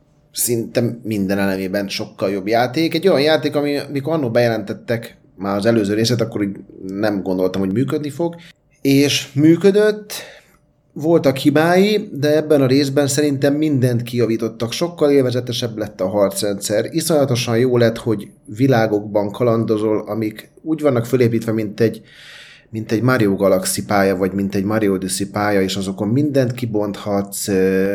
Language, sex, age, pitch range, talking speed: Hungarian, male, 30-49, 100-140 Hz, 140 wpm